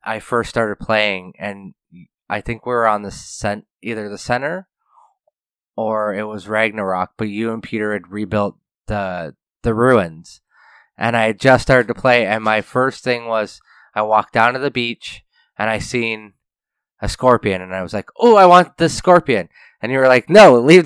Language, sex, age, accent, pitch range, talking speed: English, male, 20-39, American, 110-135 Hz, 190 wpm